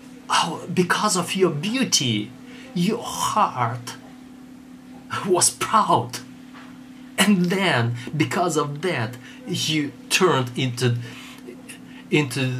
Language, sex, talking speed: Russian, male, 80 wpm